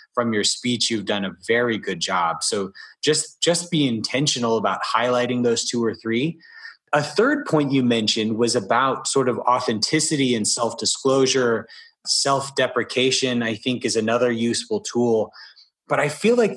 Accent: American